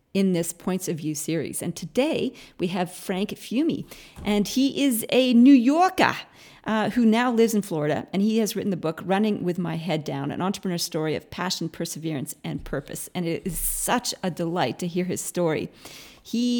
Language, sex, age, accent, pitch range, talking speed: English, female, 40-59, American, 160-210 Hz, 195 wpm